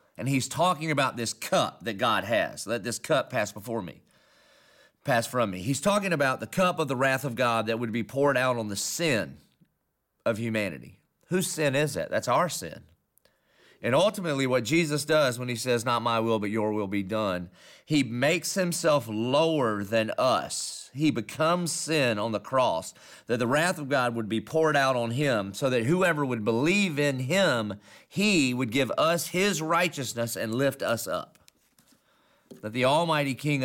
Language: English